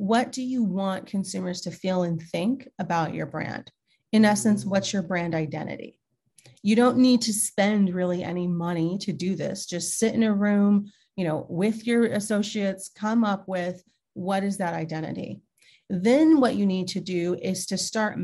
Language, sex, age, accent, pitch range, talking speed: English, female, 30-49, American, 170-215 Hz, 180 wpm